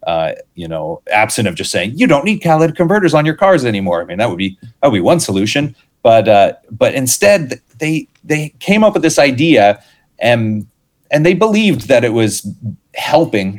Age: 30-49